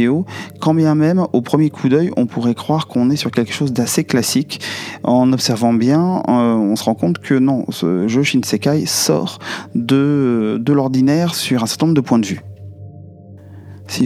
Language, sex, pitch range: French, male, 105-130 Hz